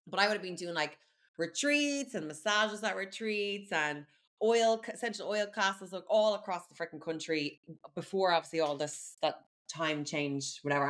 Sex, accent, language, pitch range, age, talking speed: female, Irish, English, 155-200 Hz, 20-39, 165 wpm